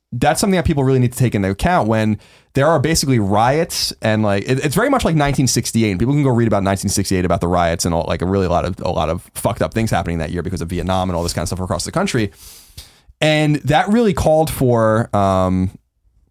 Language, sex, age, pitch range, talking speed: English, male, 30-49, 100-140 Hz, 240 wpm